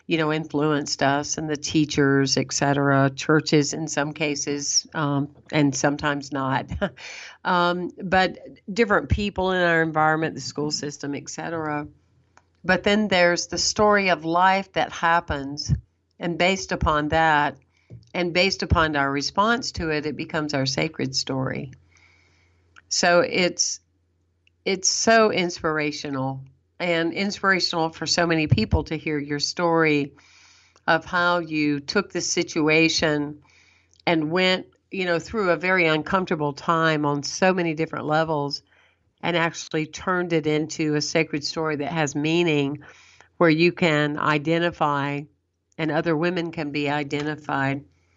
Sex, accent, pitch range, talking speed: female, American, 145-170 Hz, 135 wpm